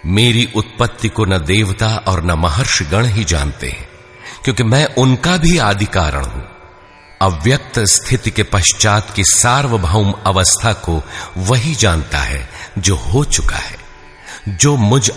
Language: Hindi